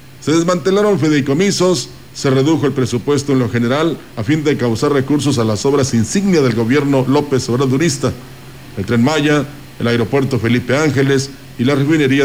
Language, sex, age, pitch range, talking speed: Spanish, male, 50-69, 130-155 Hz, 160 wpm